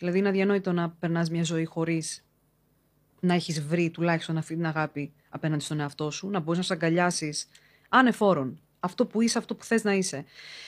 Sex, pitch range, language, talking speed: female, 155-205 Hz, Greek, 185 wpm